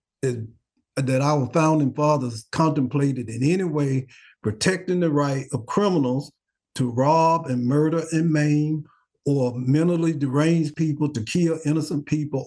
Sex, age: male, 50-69